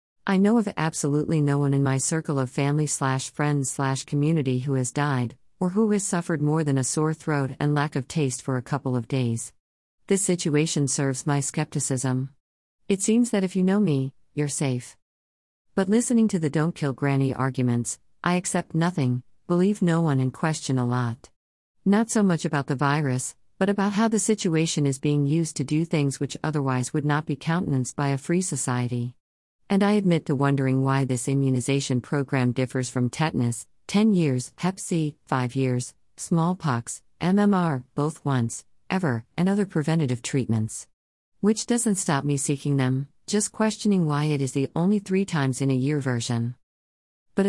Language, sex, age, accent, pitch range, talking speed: English, female, 50-69, American, 130-165 Hz, 175 wpm